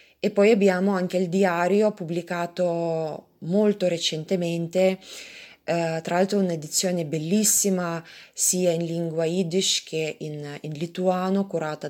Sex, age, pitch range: female, 20-39, 165-195 Hz